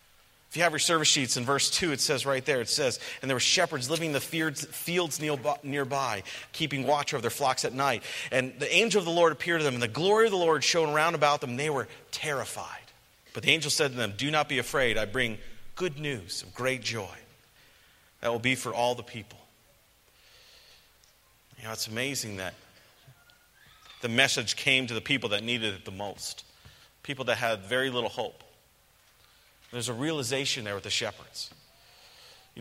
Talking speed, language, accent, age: 200 wpm, English, American, 40-59